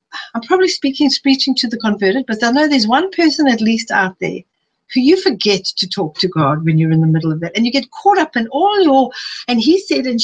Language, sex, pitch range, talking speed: English, female, 195-285 Hz, 250 wpm